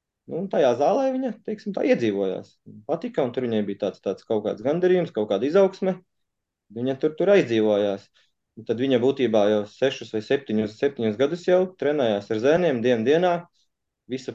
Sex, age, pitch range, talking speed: male, 20-39, 110-155 Hz, 170 wpm